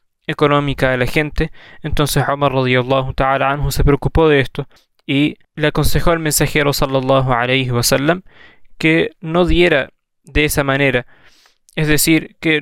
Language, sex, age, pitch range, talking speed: Spanish, male, 20-39, 130-155 Hz, 130 wpm